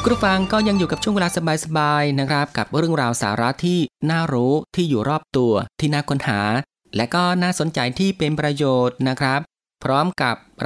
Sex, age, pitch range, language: male, 20-39, 110-150 Hz, Thai